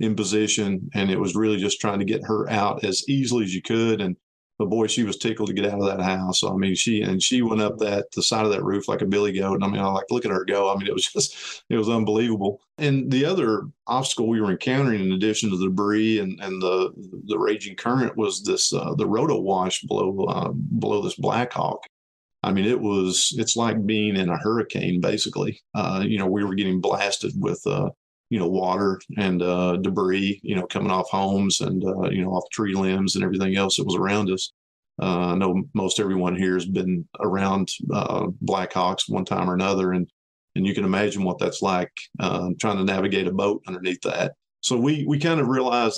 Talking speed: 230 wpm